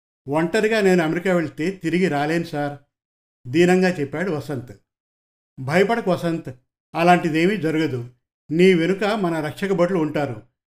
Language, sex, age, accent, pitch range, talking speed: Telugu, male, 50-69, native, 145-185 Hz, 105 wpm